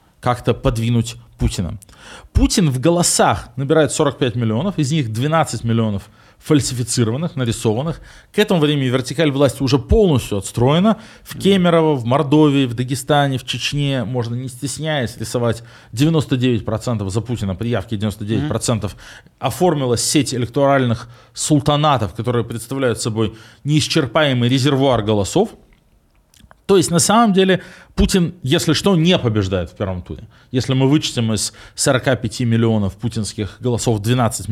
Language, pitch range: Russian, 115-155 Hz